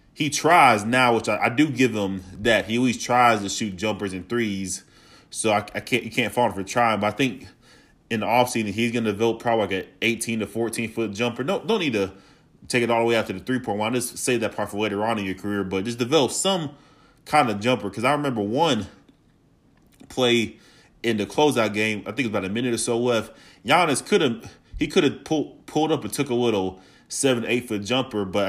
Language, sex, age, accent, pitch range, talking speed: English, male, 20-39, American, 100-125 Hz, 245 wpm